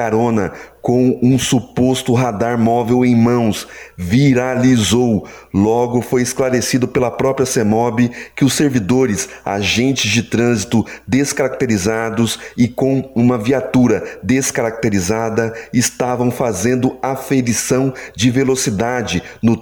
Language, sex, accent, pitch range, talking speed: Portuguese, male, Brazilian, 115-130 Hz, 100 wpm